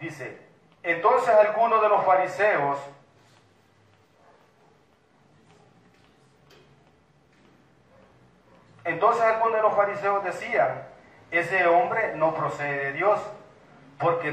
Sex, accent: male, Mexican